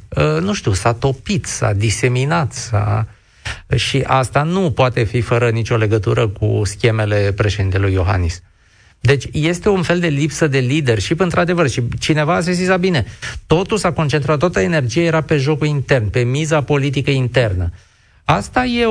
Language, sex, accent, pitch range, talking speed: Romanian, male, native, 115-165 Hz, 160 wpm